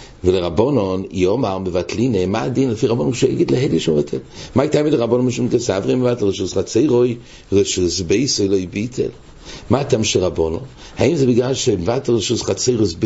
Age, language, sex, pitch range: 60-79, English, male, 95-125 Hz